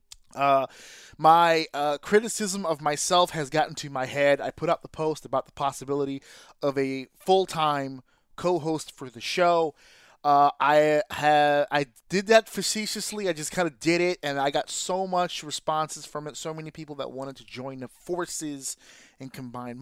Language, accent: English, American